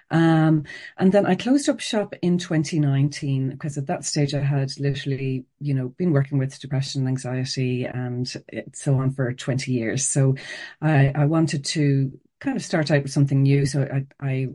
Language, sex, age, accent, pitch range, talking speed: English, female, 40-59, Irish, 135-160 Hz, 195 wpm